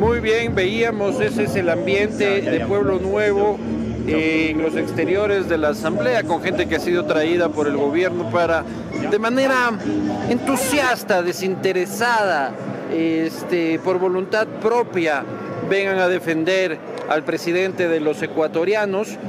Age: 50-69